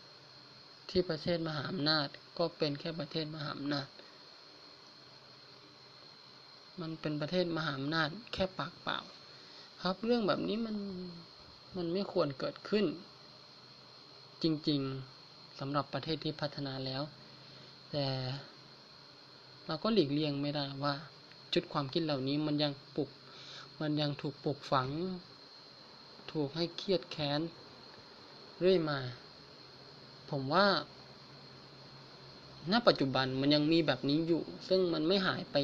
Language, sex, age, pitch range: Thai, male, 20-39, 140-170 Hz